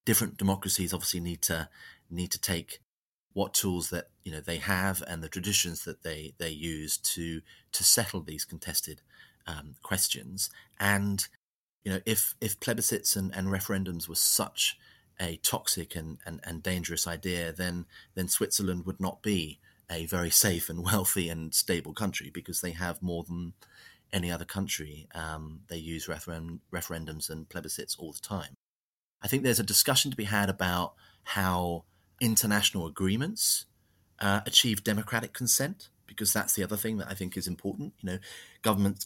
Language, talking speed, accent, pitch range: English, 165 wpm, British, 85-100 Hz